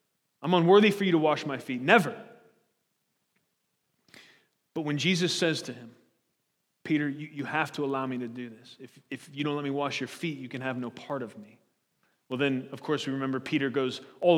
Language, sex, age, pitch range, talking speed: English, male, 30-49, 140-190 Hz, 210 wpm